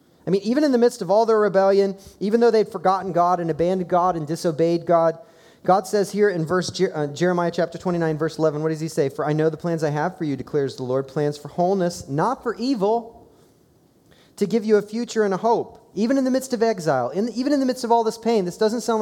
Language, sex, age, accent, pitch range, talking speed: English, male, 30-49, American, 160-215 Hz, 255 wpm